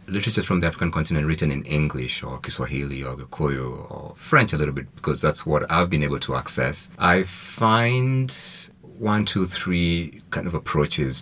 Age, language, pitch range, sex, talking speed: 30-49, English, 70-85 Hz, male, 175 wpm